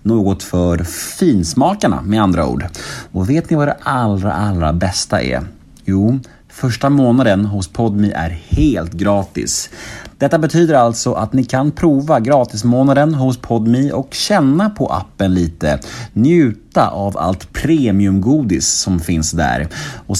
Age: 30-49